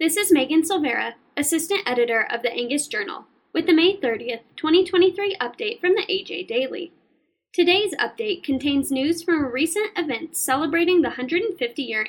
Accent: American